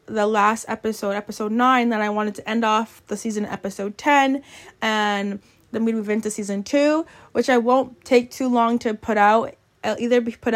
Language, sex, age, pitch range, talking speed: English, female, 20-39, 215-260 Hz, 205 wpm